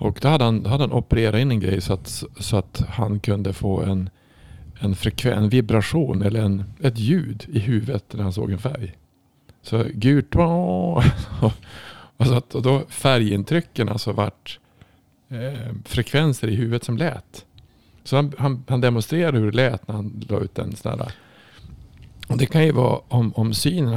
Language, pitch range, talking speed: Swedish, 105-125 Hz, 175 wpm